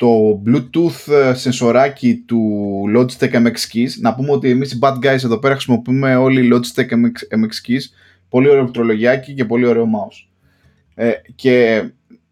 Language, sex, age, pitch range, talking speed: Greek, male, 20-39, 115-140 Hz, 140 wpm